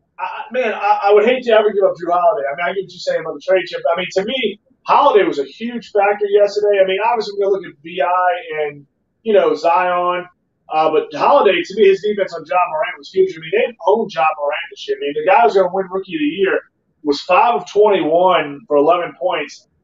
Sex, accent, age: male, American, 30-49